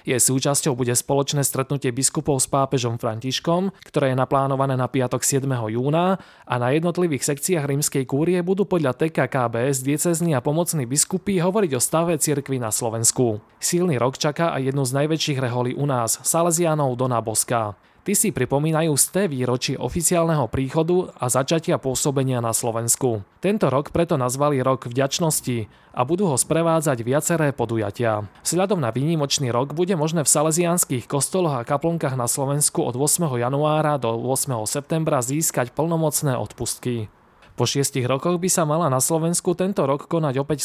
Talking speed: 155 wpm